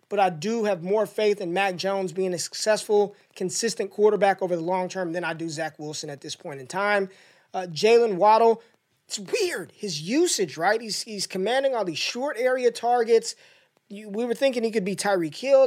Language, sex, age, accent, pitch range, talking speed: English, male, 20-39, American, 170-215 Hz, 205 wpm